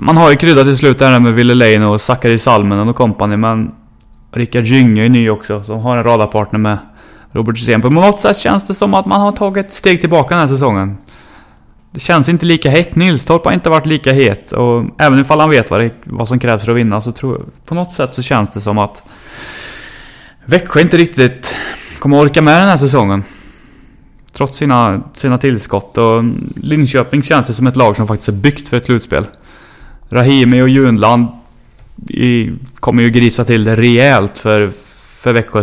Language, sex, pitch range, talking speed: Swedish, male, 110-135 Hz, 195 wpm